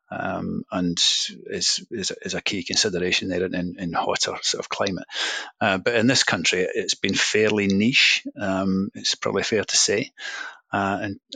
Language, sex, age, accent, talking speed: English, male, 30-49, British, 175 wpm